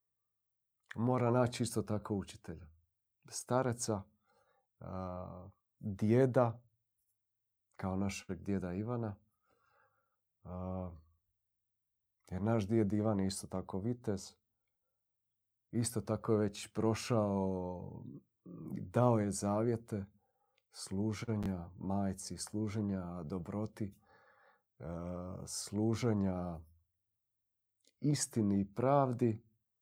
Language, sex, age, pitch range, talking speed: Croatian, male, 40-59, 100-115 Hz, 65 wpm